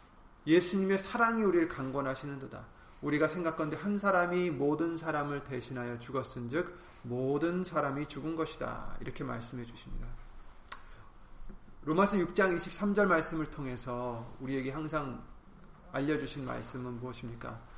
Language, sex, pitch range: Korean, male, 130-185 Hz